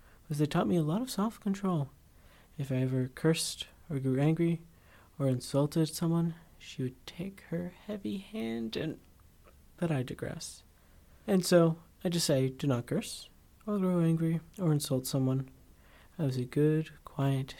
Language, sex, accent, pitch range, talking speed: English, male, American, 120-160 Hz, 160 wpm